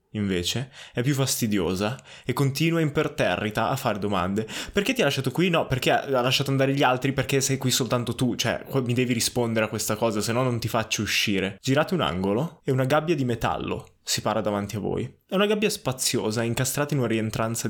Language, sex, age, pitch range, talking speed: Italian, male, 20-39, 110-130 Hz, 210 wpm